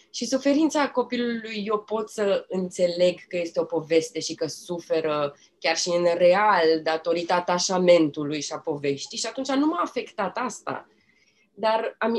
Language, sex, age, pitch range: Romanian, female, 20-39, 175-245 Hz